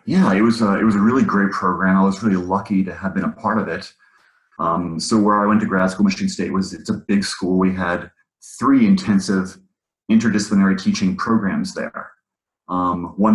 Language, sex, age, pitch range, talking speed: English, male, 30-49, 95-115 Hz, 205 wpm